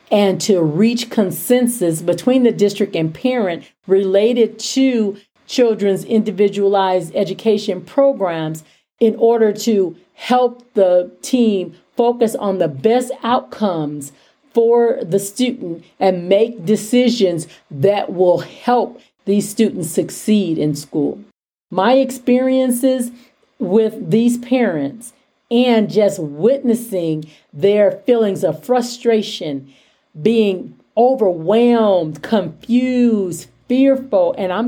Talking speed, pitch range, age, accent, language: 100 wpm, 185-245 Hz, 50-69, American, English